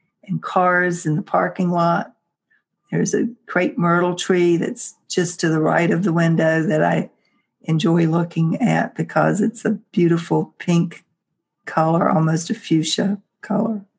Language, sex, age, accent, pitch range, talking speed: English, female, 60-79, American, 165-200 Hz, 145 wpm